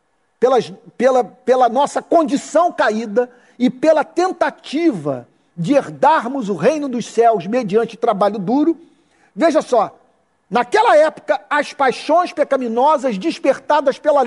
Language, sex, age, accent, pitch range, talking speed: Portuguese, male, 50-69, Brazilian, 225-350 Hz, 110 wpm